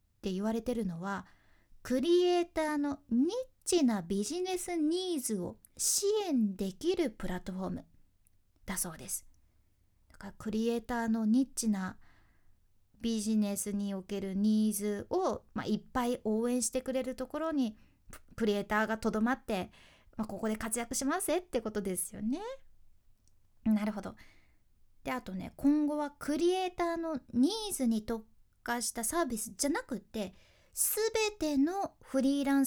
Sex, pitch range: female, 200-280 Hz